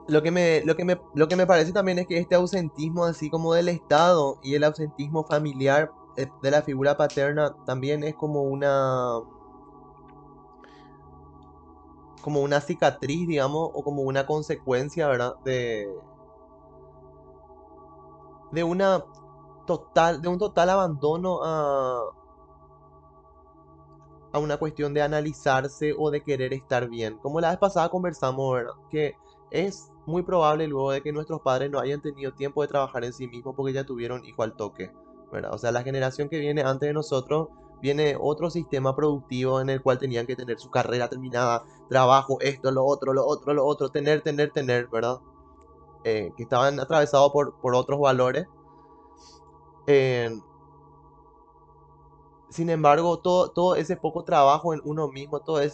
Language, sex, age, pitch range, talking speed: Spanish, male, 20-39, 130-160 Hz, 155 wpm